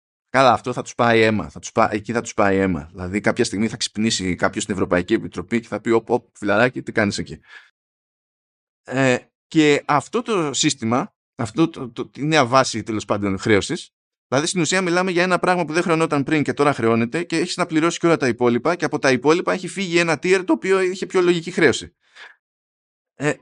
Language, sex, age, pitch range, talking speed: Greek, male, 20-39, 115-175 Hz, 215 wpm